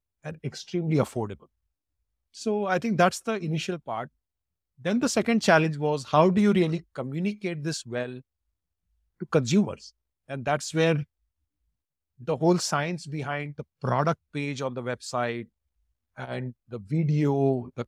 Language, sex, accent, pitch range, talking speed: English, male, Indian, 120-175 Hz, 140 wpm